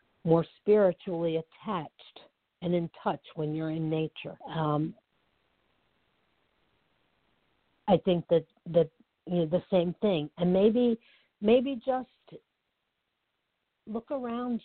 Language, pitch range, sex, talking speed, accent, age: English, 170-220 Hz, female, 105 wpm, American, 60-79